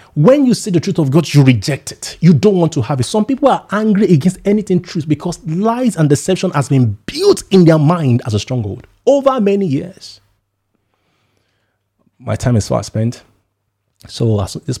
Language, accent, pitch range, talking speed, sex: English, Nigerian, 100-135 Hz, 190 wpm, male